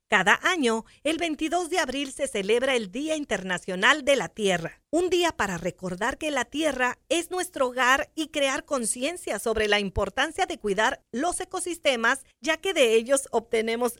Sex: female